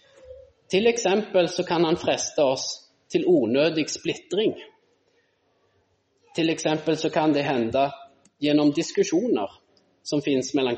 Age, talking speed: 20-39, 115 wpm